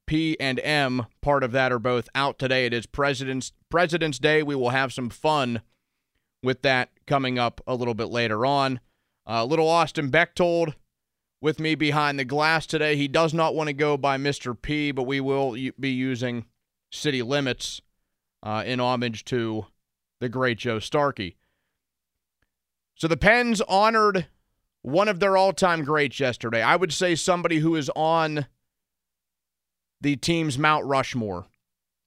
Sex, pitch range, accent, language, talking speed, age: male, 120-155 Hz, American, English, 155 wpm, 30-49